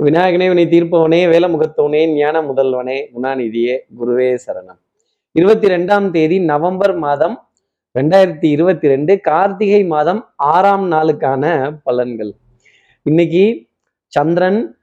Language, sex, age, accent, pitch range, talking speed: Tamil, male, 30-49, native, 145-200 Hz, 95 wpm